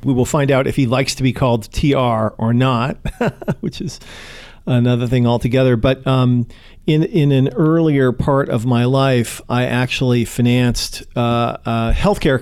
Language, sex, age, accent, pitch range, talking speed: English, male, 40-59, American, 115-135 Hz, 165 wpm